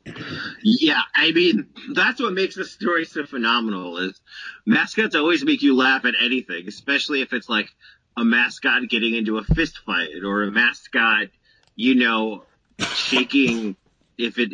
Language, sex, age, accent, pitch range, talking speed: English, male, 30-49, American, 105-130 Hz, 155 wpm